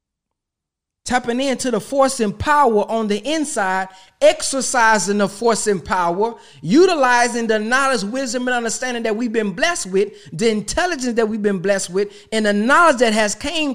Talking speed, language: 165 wpm, English